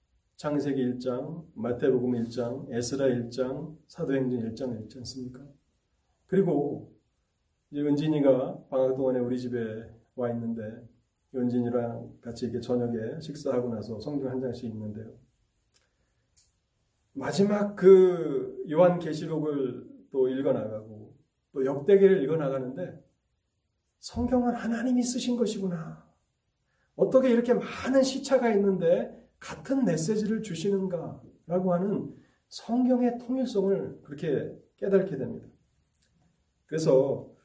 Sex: male